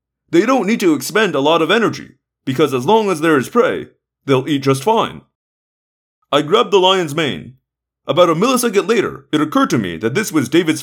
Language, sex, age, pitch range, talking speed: English, male, 30-49, 135-215 Hz, 205 wpm